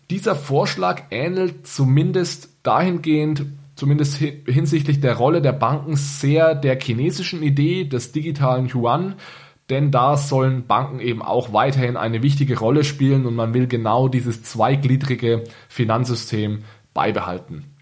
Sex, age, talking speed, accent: male, 20-39, 125 wpm, German